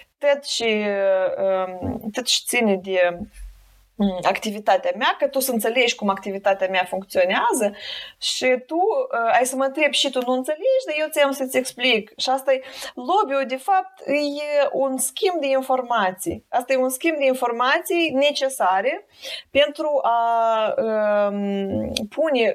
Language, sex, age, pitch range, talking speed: Romanian, female, 20-39, 200-265 Hz, 140 wpm